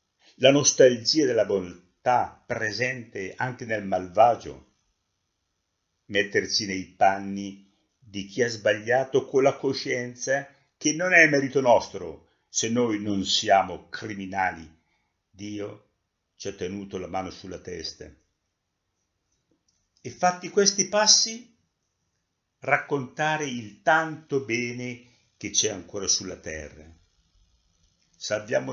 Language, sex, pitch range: Italian, male, 90-130 Hz